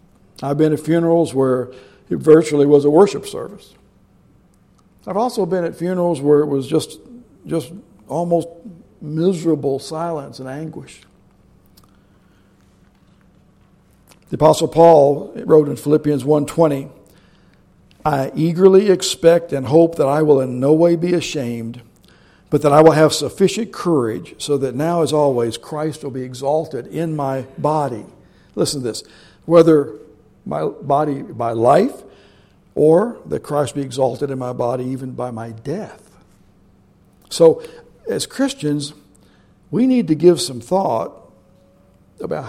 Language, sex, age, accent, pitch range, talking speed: English, male, 60-79, American, 130-165 Hz, 135 wpm